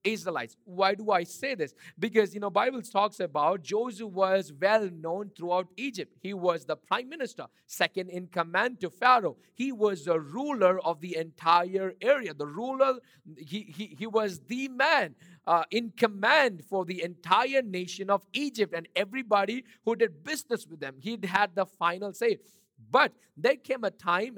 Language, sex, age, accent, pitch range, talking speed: English, male, 50-69, Indian, 165-230 Hz, 170 wpm